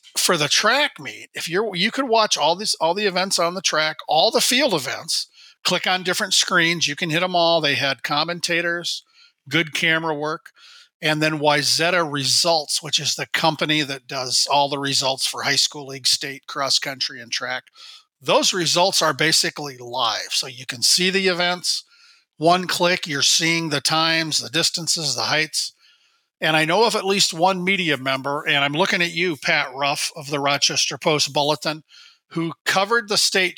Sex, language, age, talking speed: male, English, 40-59, 185 wpm